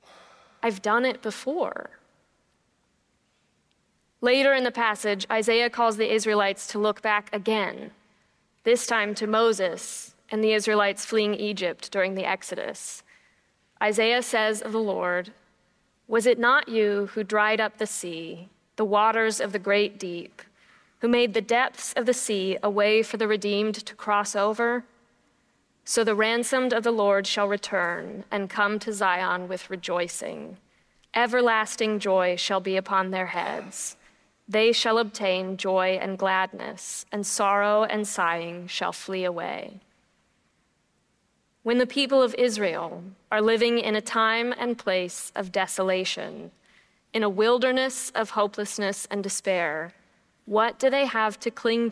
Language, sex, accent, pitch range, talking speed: English, female, American, 195-230 Hz, 145 wpm